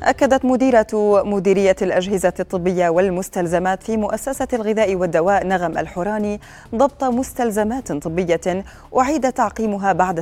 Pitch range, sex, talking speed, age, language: 170-210 Hz, female, 105 wpm, 30-49, Arabic